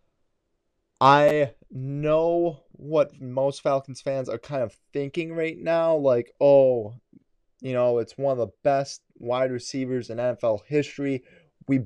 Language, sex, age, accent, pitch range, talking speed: English, male, 20-39, American, 115-150 Hz, 135 wpm